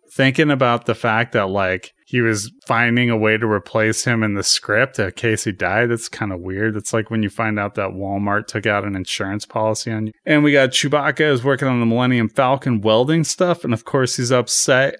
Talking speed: 230 wpm